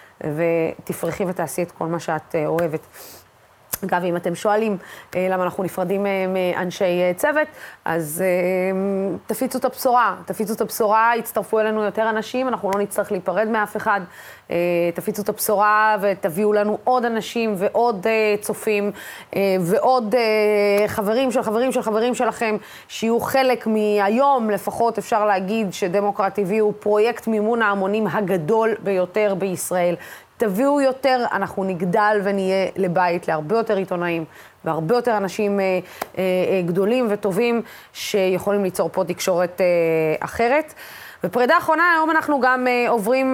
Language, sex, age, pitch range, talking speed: Hebrew, female, 20-39, 190-225 Hz, 140 wpm